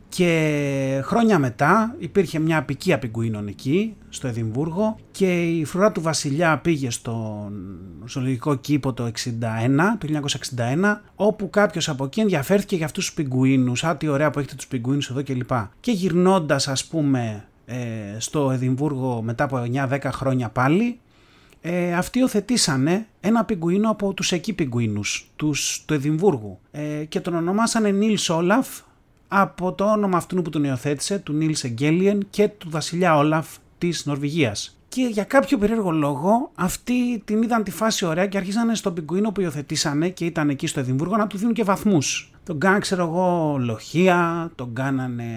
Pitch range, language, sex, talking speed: 135-195 Hz, Greek, male, 155 wpm